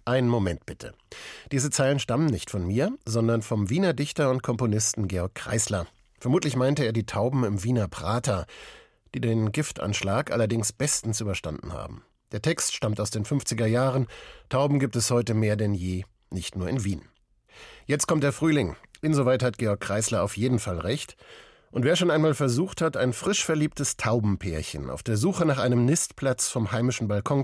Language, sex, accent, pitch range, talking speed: German, male, German, 105-135 Hz, 175 wpm